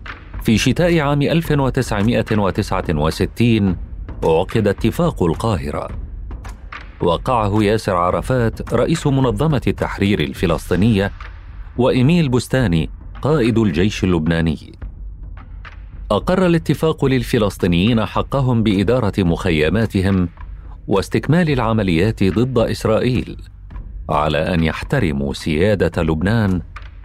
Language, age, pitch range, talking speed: Arabic, 40-59, 85-115 Hz, 75 wpm